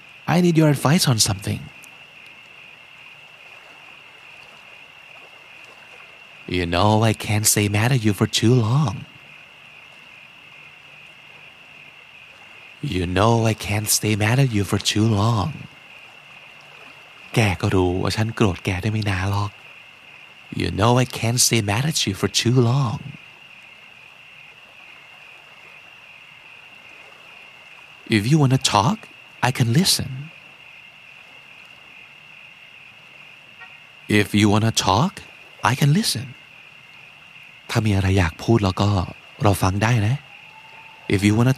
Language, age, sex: Thai, 30-49, male